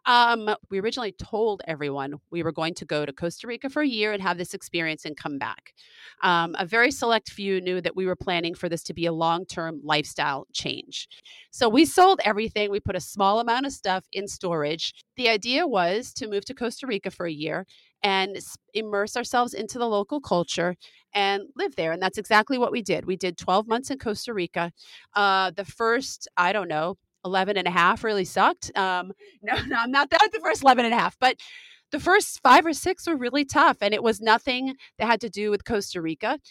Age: 30-49